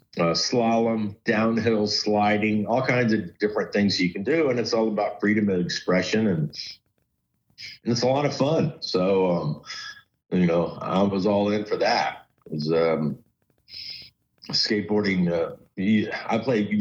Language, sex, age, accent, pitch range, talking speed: English, male, 50-69, American, 95-115 Hz, 155 wpm